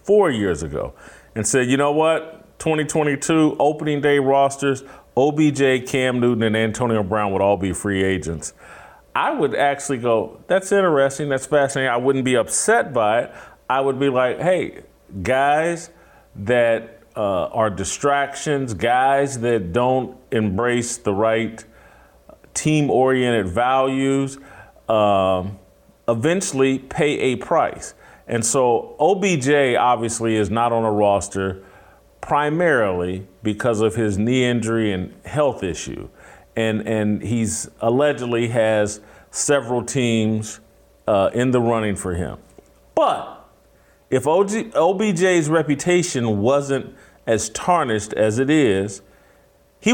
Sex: male